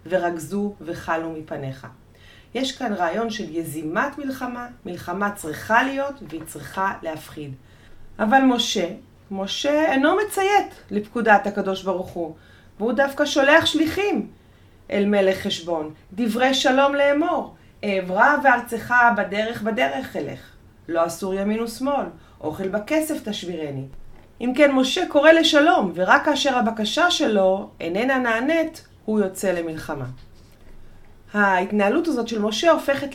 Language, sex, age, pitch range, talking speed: Hebrew, female, 30-49, 180-270 Hz, 120 wpm